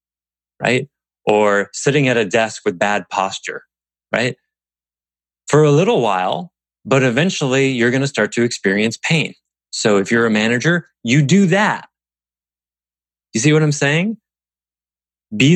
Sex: male